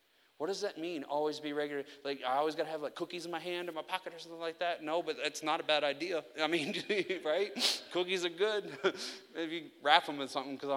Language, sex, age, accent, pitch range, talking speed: English, male, 30-49, American, 145-170 Hz, 245 wpm